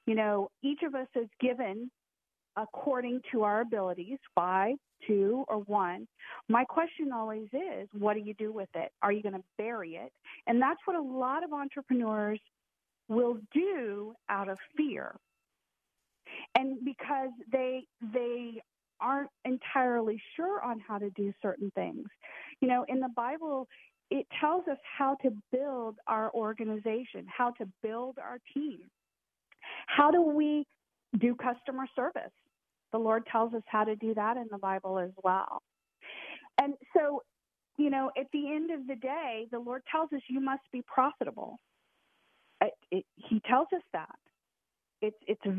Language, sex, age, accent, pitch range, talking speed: English, female, 40-59, American, 215-275 Hz, 155 wpm